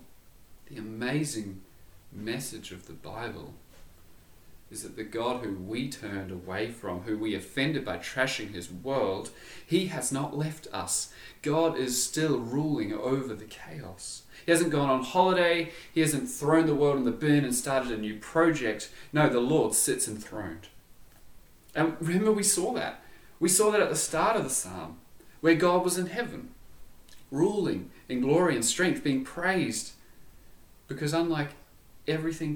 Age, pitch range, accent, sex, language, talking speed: 30-49, 110-155 Hz, Australian, male, English, 160 wpm